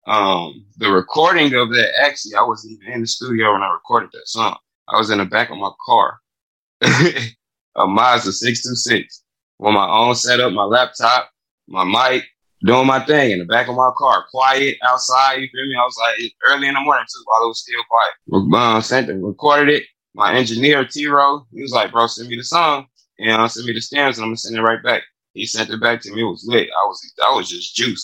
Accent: American